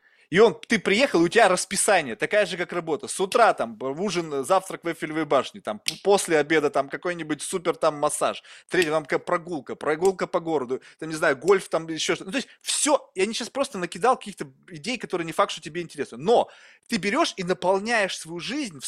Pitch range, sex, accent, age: 165-235 Hz, male, native, 20-39